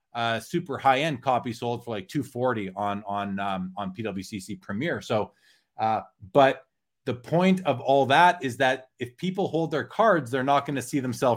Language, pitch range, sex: English, 125-160 Hz, male